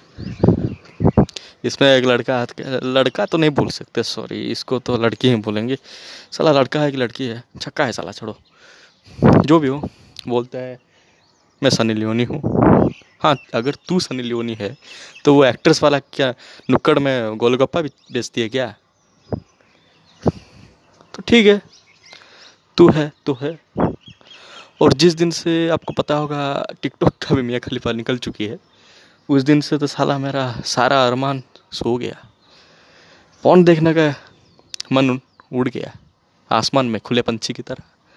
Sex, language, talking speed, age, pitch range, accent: male, Hindi, 150 wpm, 20-39, 120-145 Hz, native